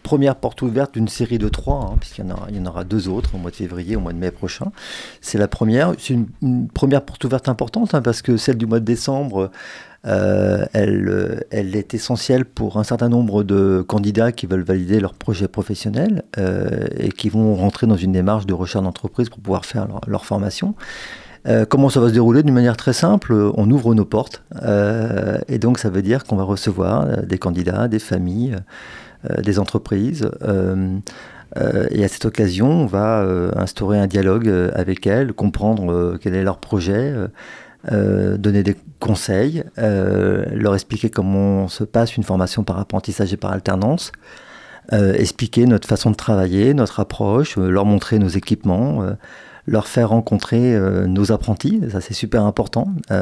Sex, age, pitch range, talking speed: male, 40-59, 95-120 Hz, 180 wpm